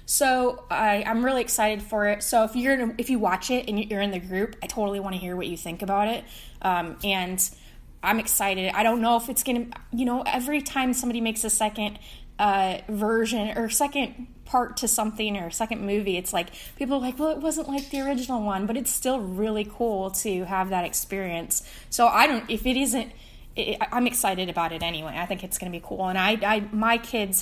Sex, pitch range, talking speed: female, 185-230 Hz, 230 wpm